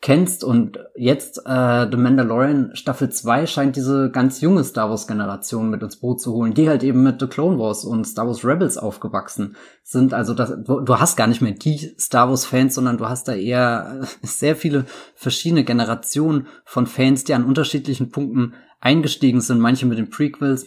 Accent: German